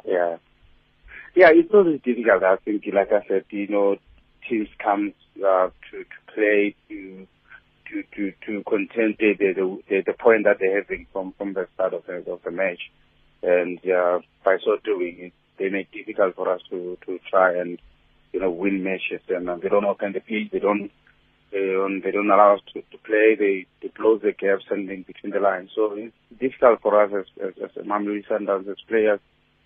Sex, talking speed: male, 195 wpm